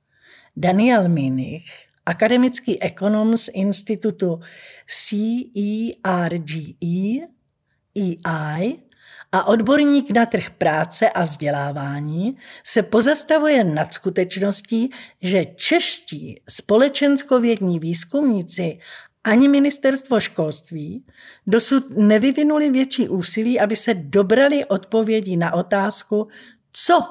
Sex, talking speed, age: female, 80 wpm, 50-69